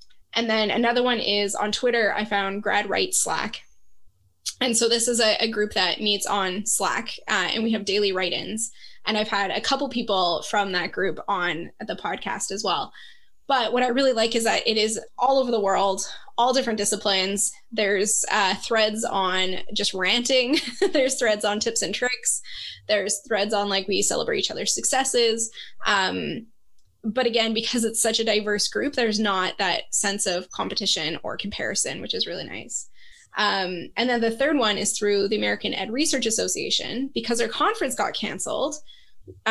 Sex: female